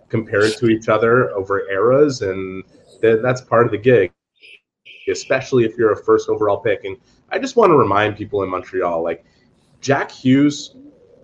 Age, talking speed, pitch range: 30-49, 165 wpm, 100-135 Hz